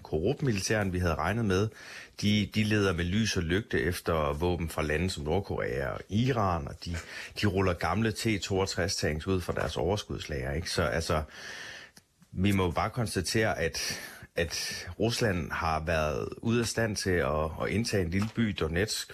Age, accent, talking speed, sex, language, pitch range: 30-49, native, 165 wpm, male, Danish, 85-105 Hz